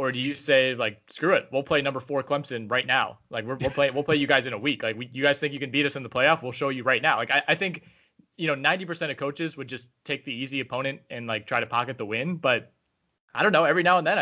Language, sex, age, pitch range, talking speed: English, male, 20-39, 120-145 Hz, 300 wpm